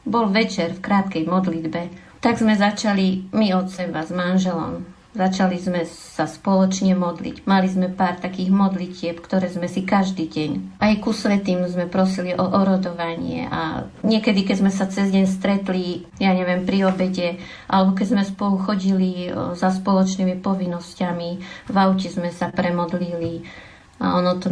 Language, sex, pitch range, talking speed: Slovak, female, 180-195 Hz, 150 wpm